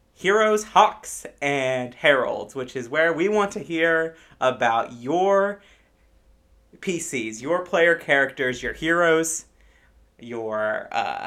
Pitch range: 120-160 Hz